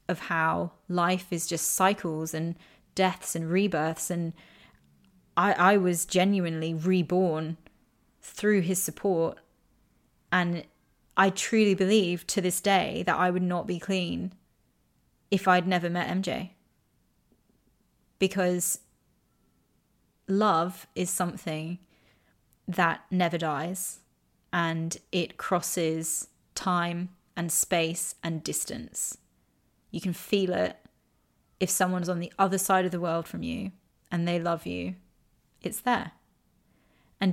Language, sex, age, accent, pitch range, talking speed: English, female, 20-39, British, 165-185 Hz, 120 wpm